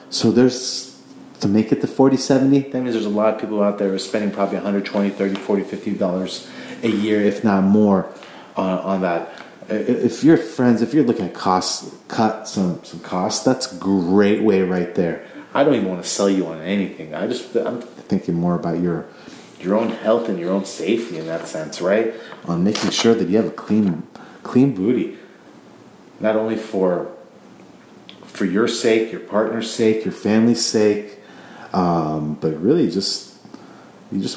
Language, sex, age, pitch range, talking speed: English, male, 30-49, 90-115 Hz, 185 wpm